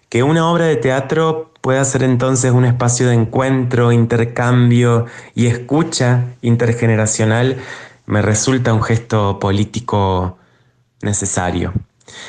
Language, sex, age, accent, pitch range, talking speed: Spanish, male, 20-39, Argentinian, 110-130 Hz, 105 wpm